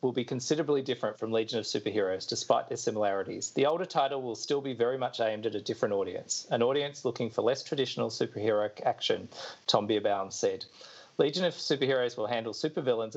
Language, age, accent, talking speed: English, 40-59, Australian, 185 wpm